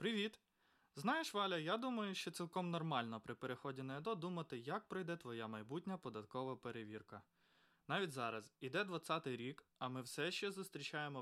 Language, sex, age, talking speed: Ukrainian, male, 20-39, 155 wpm